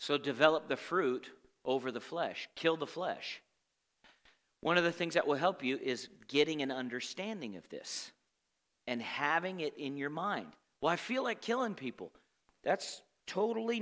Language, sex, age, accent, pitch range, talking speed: English, male, 40-59, American, 175-270 Hz, 165 wpm